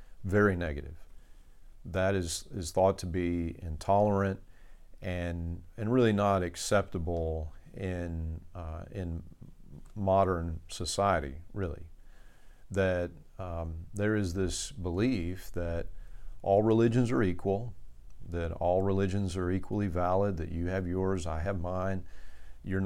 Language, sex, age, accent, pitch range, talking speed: English, male, 50-69, American, 85-100 Hz, 120 wpm